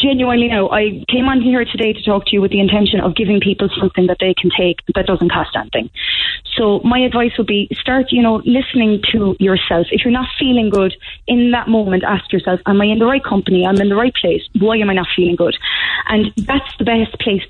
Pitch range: 190-240 Hz